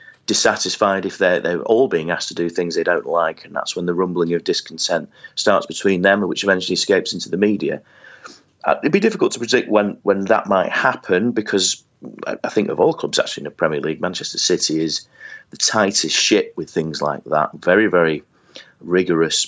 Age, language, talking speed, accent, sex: 30-49, English, 195 wpm, British, male